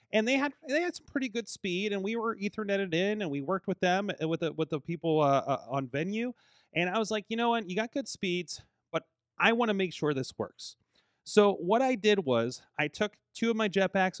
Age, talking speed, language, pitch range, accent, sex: 30-49, 240 wpm, English, 125-175 Hz, American, male